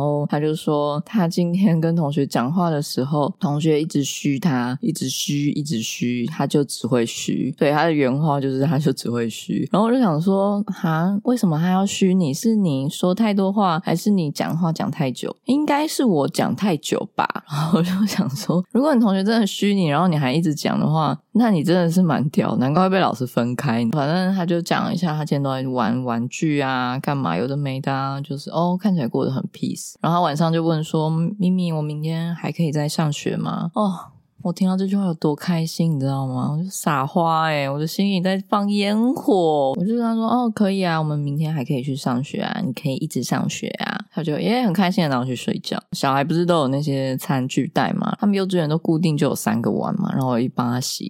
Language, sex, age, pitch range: Chinese, female, 20-39, 145-200 Hz